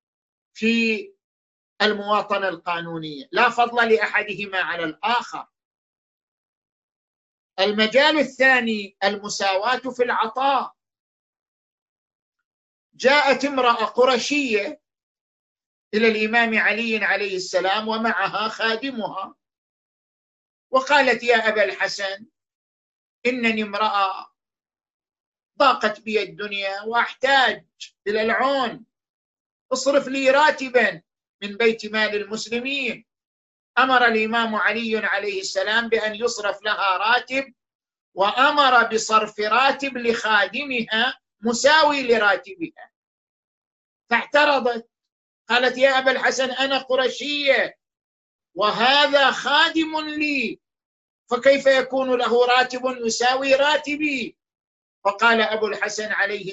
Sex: male